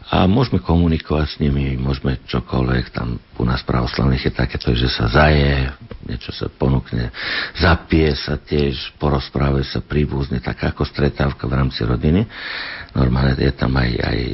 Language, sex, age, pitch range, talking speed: Slovak, male, 60-79, 65-85 Hz, 150 wpm